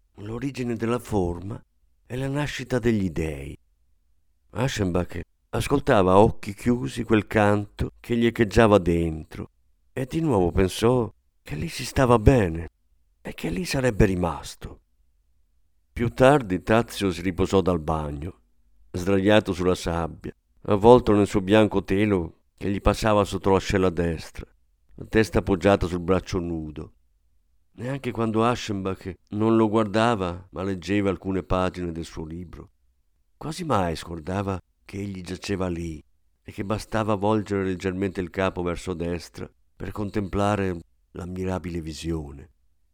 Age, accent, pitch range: 50-69, native, 80-110 Hz